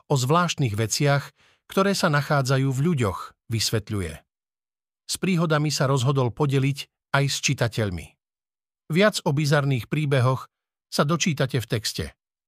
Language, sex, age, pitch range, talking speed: Slovak, male, 50-69, 115-150 Hz, 120 wpm